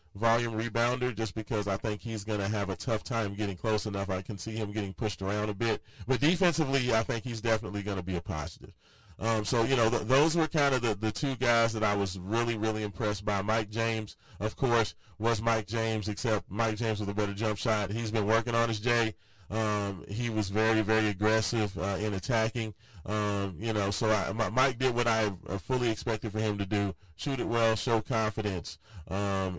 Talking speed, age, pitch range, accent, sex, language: 215 wpm, 30-49, 100-115 Hz, American, male, English